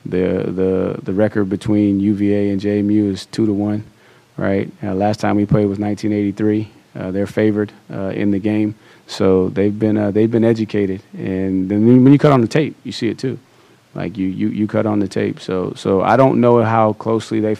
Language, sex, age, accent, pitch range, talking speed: English, male, 30-49, American, 95-105 Hz, 210 wpm